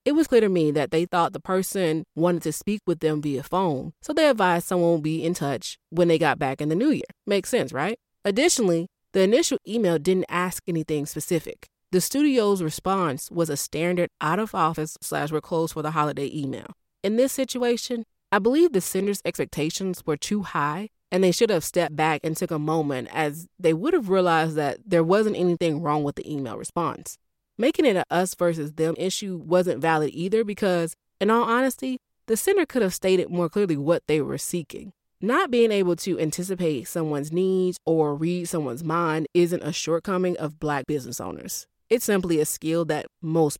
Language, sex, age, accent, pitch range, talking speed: English, female, 20-39, American, 160-205 Hz, 195 wpm